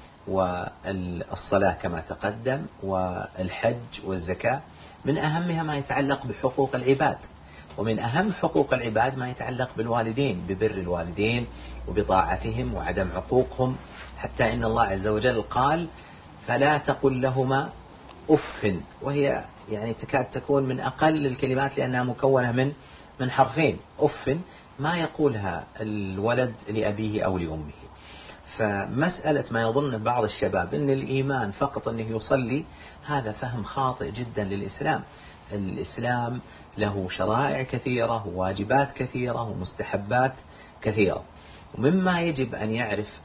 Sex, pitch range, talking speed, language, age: male, 100-135 Hz, 110 wpm, Arabic, 50-69